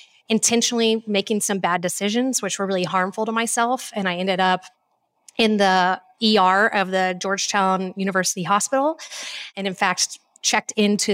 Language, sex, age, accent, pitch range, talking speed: English, female, 30-49, American, 185-220 Hz, 150 wpm